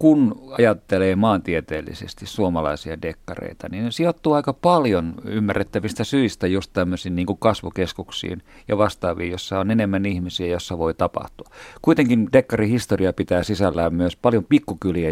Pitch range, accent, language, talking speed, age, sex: 90-115 Hz, native, Finnish, 125 wpm, 50-69, male